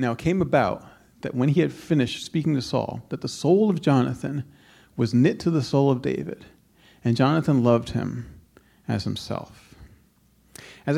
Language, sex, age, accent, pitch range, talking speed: English, male, 40-59, American, 120-170 Hz, 170 wpm